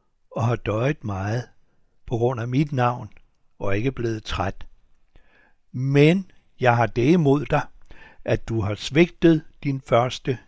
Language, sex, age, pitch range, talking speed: Danish, male, 60-79, 100-130 Hz, 145 wpm